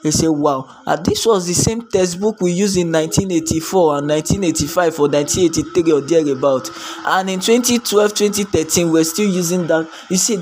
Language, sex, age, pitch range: English, male, 20-39, 155-190 Hz